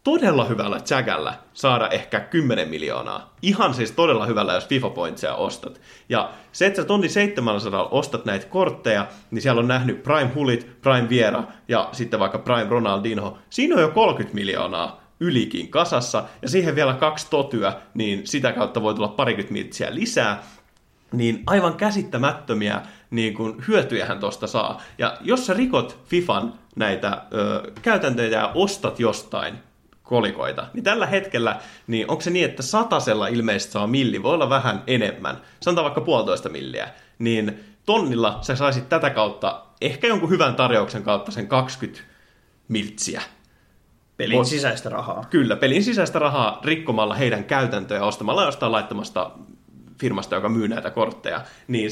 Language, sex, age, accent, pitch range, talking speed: Finnish, male, 30-49, native, 110-165 Hz, 145 wpm